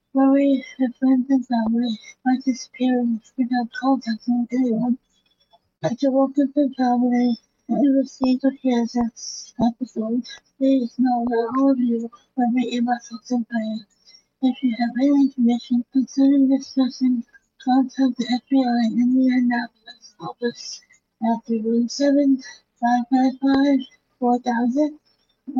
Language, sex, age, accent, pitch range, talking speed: English, female, 60-79, American, 235-270 Hz, 110 wpm